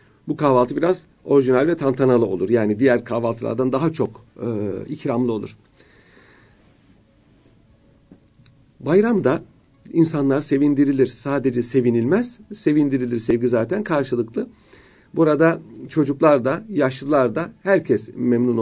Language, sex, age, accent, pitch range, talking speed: Turkish, male, 50-69, native, 120-165 Hz, 100 wpm